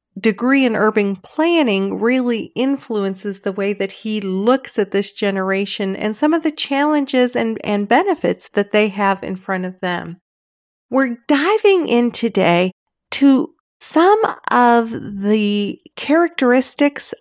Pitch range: 200-275 Hz